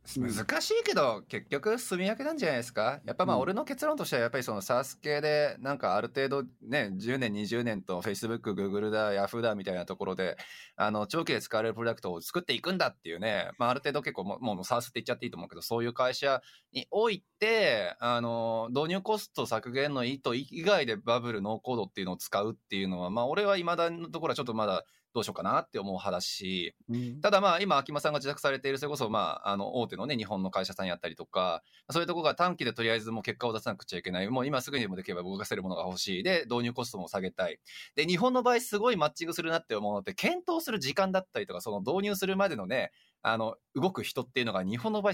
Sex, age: male, 20-39